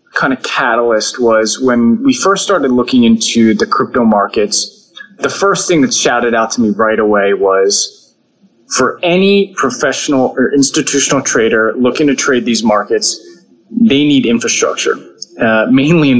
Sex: male